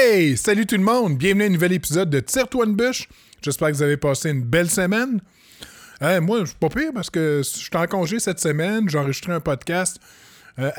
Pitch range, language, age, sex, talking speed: 130-175 Hz, French, 20-39, male, 230 wpm